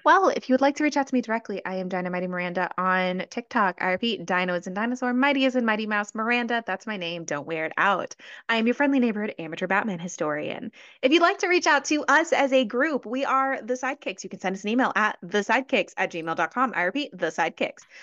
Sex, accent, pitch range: female, American, 190-275 Hz